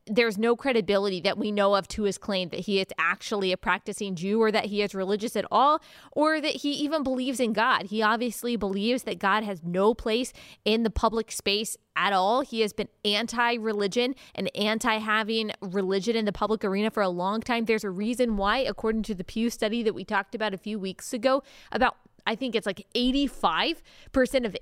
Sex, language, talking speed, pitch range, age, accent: female, English, 205 wpm, 205-250 Hz, 20-39, American